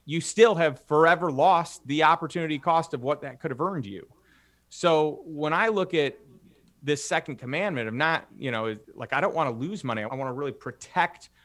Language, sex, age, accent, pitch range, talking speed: English, male, 30-49, American, 130-160 Hz, 205 wpm